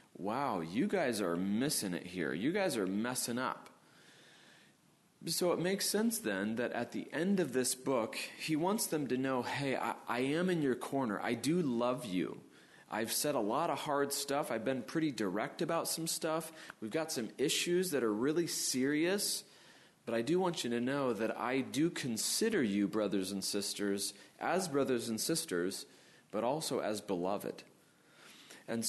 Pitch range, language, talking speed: 115-160 Hz, English, 180 wpm